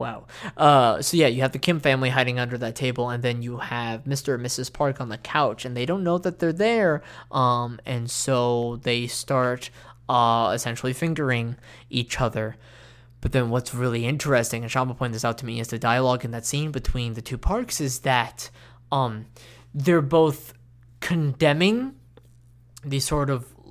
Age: 10-29